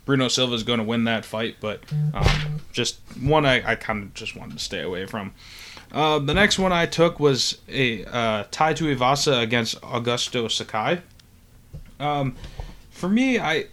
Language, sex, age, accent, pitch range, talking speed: English, male, 20-39, American, 110-135 Hz, 170 wpm